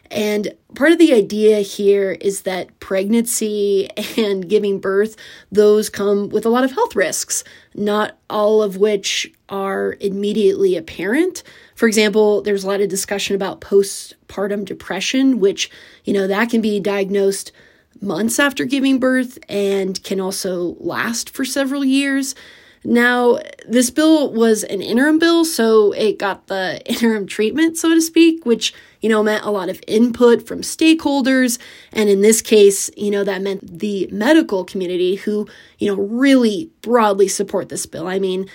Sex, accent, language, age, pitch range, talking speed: female, American, English, 30-49, 195-250 Hz, 160 wpm